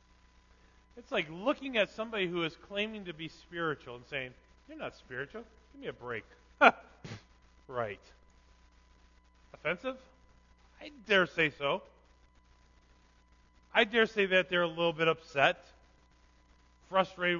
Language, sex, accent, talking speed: English, male, American, 125 wpm